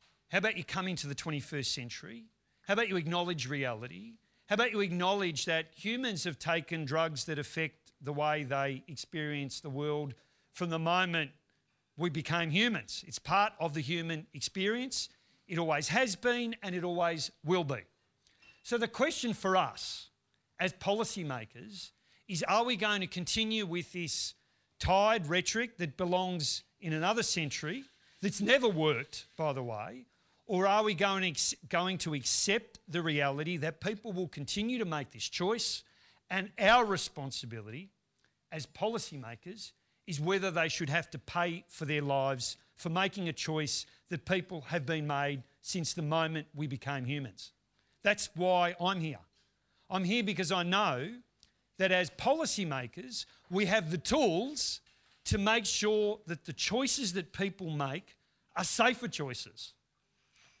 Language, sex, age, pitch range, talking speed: English, male, 50-69, 145-195 Hz, 150 wpm